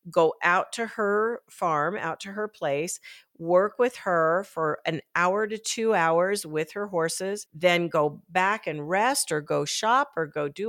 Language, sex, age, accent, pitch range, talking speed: English, female, 50-69, American, 170-220 Hz, 180 wpm